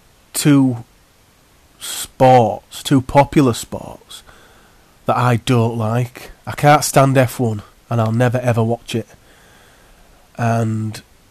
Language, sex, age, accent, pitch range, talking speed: English, male, 30-49, British, 115-135 Hz, 105 wpm